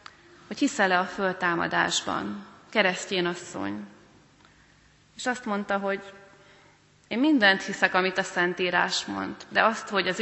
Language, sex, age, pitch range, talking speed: Hungarian, female, 30-49, 185-210 Hz, 130 wpm